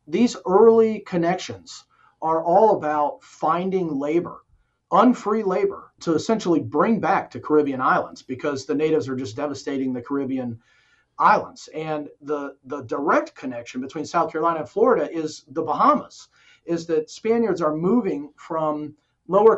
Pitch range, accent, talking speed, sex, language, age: 140-185 Hz, American, 140 wpm, male, English, 40-59